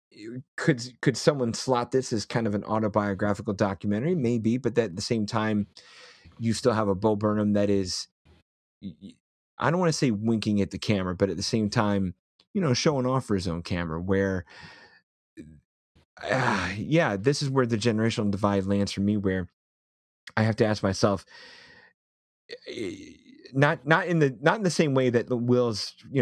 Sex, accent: male, American